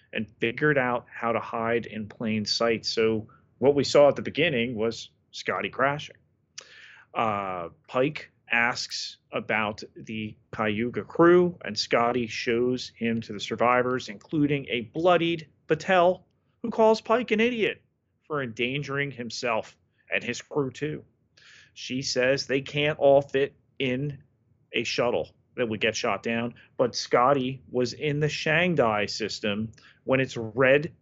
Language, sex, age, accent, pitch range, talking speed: English, male, 30-49, American, 115-145 Hz, 140 wpm